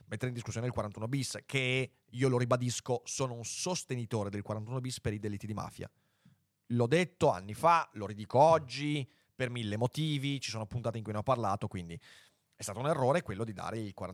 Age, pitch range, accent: 30-49, 110-140 Hz, native